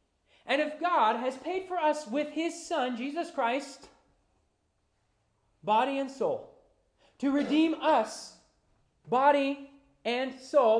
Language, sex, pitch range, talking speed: English, male, 150-250 Hz, 115 wpm